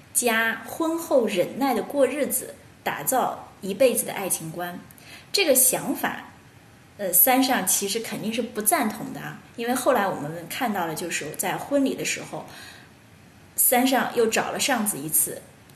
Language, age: Chinese, 20-39